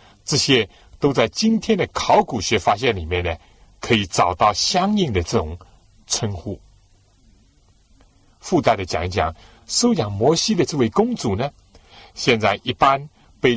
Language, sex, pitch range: Chinese, male, 90-120 Hz